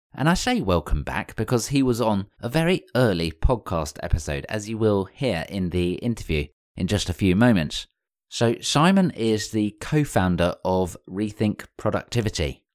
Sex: male